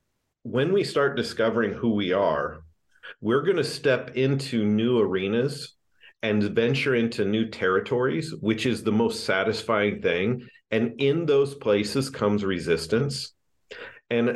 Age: 40-59